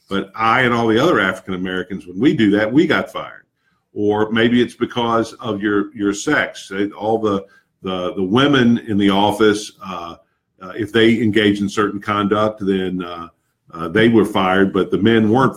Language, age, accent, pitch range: English, 50-69, American, 95-115 Hz